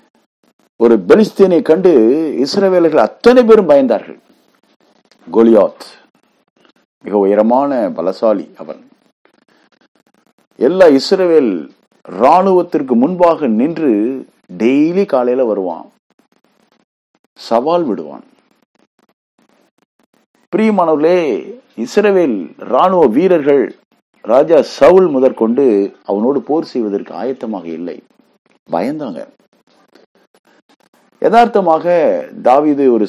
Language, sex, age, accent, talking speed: Tamil, male, 50-69, native, 75 wpm